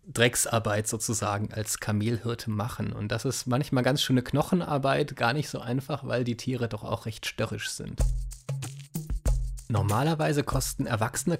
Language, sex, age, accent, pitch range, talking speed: German, male, 30-49, German, 115-135 Hz, 140 wpm